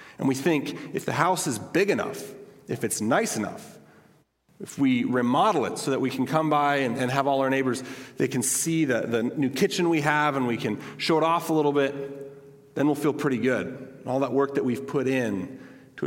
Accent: American